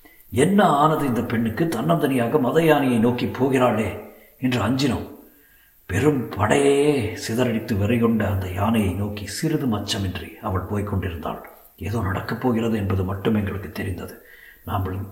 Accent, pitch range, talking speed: native, 100-120 Hz, 120 wpm